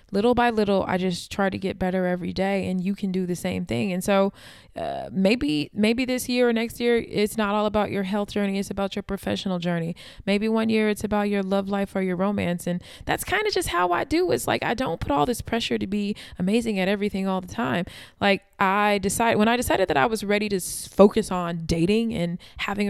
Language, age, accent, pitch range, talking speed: English, 20-39, American, 180-225 Hz, 240 wpm